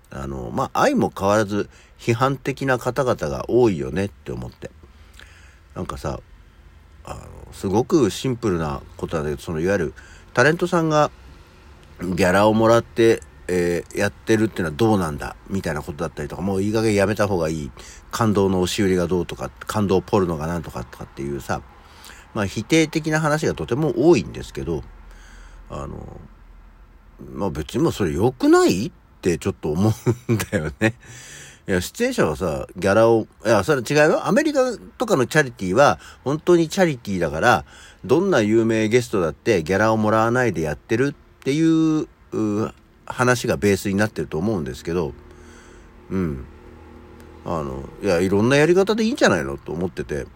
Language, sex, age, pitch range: Japanese, male, 60-79, 85-130 Hz